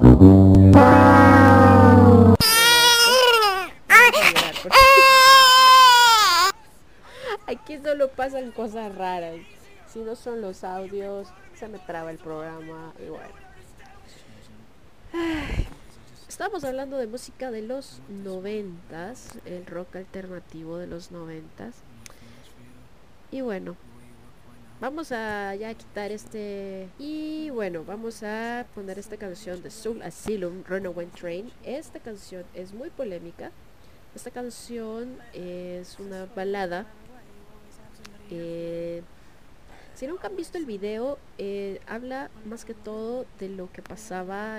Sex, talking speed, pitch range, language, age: female, 100 wpm, 175-250 Hz, Spanish, 20-39